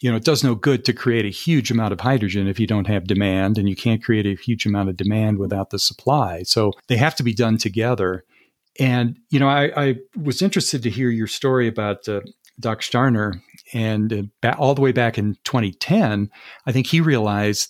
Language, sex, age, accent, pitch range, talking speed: English, male, 50-69, American, 105-130 Hz, 215 wpm